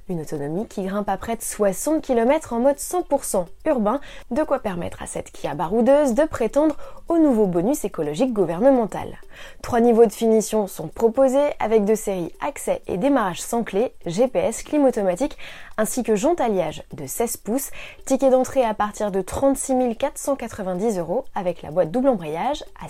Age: 20-39